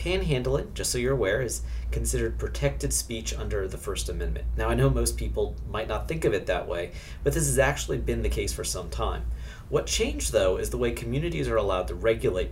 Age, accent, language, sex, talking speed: 40-59, American, English, male, 220 wpm